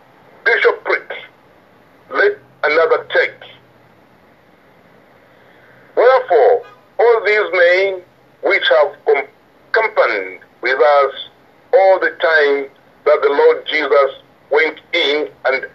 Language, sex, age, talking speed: English, male, 60-79, 90 wpm